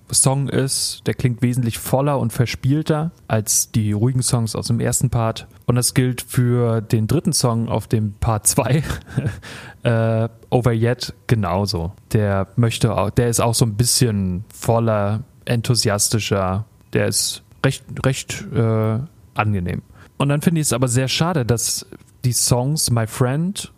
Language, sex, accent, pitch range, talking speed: German, male, German, 110-130 Hz, 155 wpm